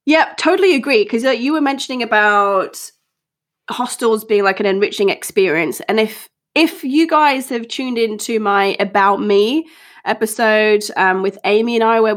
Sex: female